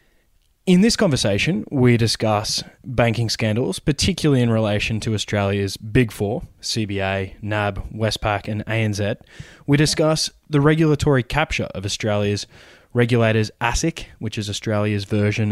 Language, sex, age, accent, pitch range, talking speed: English, male, 20-39, Australian, 105-140 Hz, 125 wpm